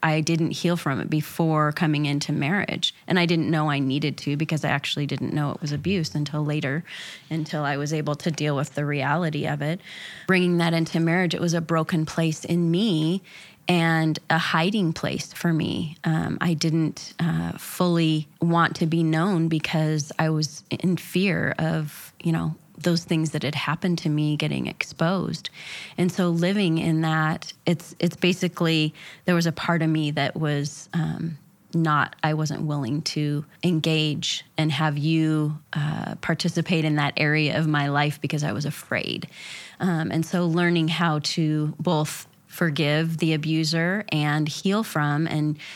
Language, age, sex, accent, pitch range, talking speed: English, 30-49, female, American, 150-170 Hz, 175 wpm